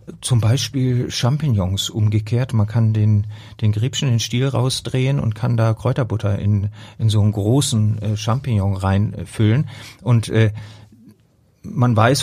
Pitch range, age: 105-130 Hz, 40-59